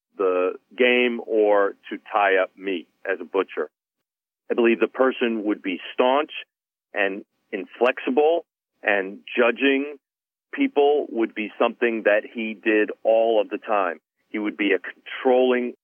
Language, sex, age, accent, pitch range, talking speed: English, male, 40-59, American, 110-150 Hz, 140 wpm